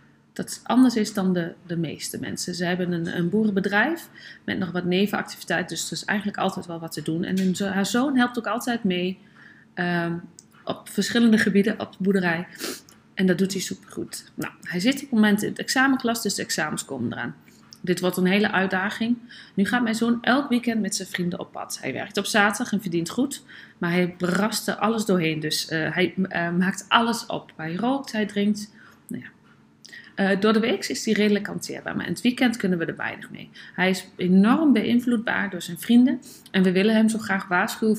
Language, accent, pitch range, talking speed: Dutch, Dutch, 180-220 Hz, 205 wpm